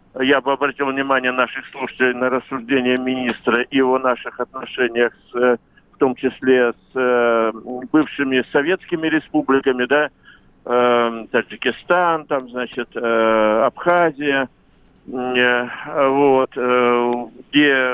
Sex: male